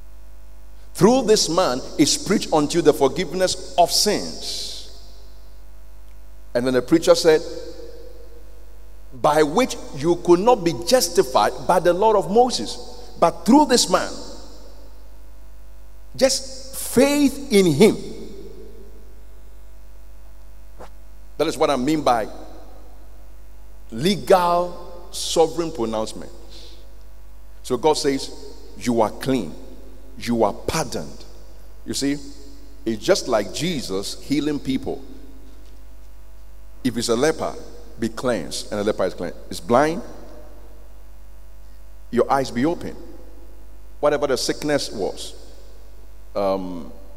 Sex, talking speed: male, 105 wpm